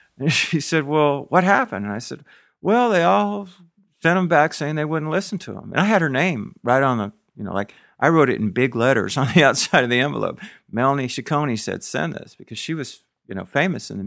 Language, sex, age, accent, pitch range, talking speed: English, male, 50-69, American, 110-155 Hz, 245 wpm